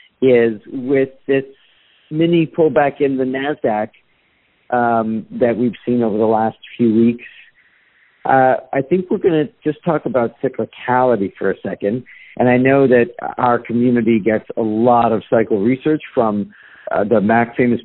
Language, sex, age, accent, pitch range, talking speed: English, male, 50-69, American, 115-150 Hz, 155 wpm